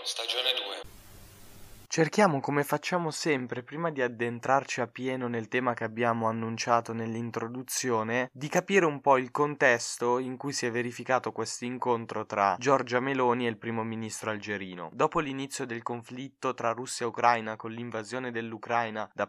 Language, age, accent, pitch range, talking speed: Italian, 20-39, native, 120-150 Hz, 155 wpm